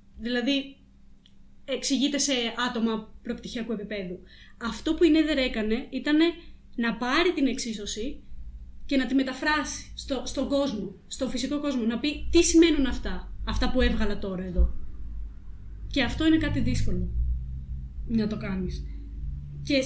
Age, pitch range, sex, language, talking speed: 20-39, 210-275 Hz, female, Greek, 135 wpm